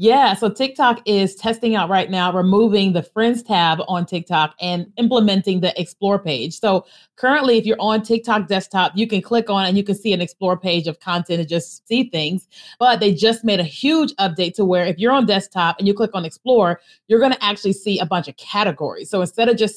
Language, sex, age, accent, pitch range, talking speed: English, female, 30-49, American, 180-215 Hz, 220 wpm